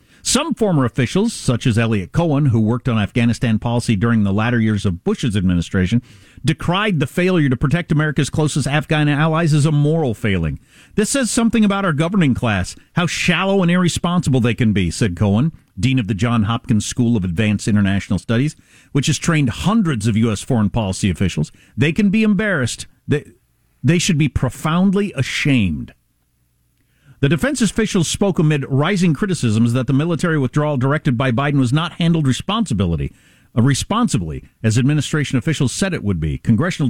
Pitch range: 115-165 Hz